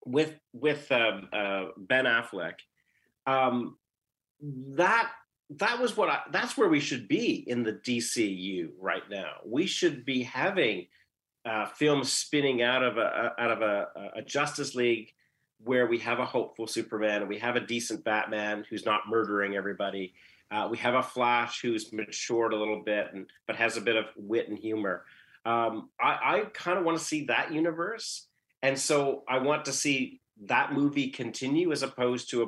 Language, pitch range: English, 110-140 Hz